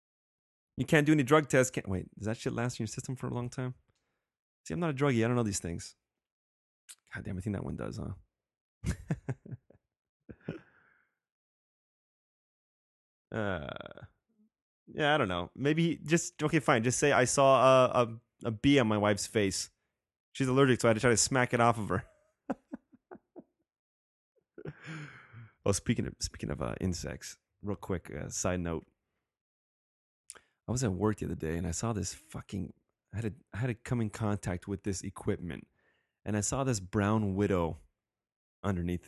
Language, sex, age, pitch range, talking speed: English, male, 30-49, 90-130 Hz, 165 wpm